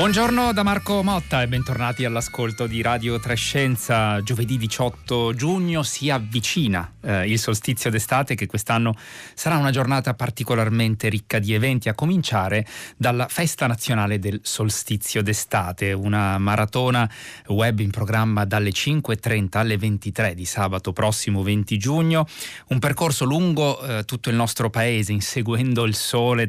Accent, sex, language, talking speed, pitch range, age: native, male, Italian, 140 wpm, 105-130 Hz, 30-49